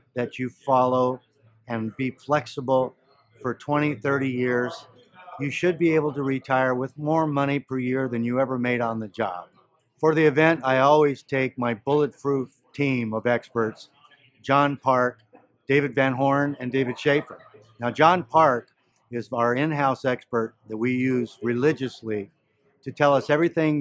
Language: English